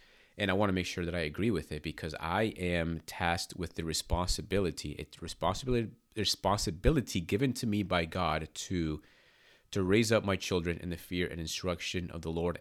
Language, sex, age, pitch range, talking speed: English, male, 30-49, 85-95 Hz, 185 wpm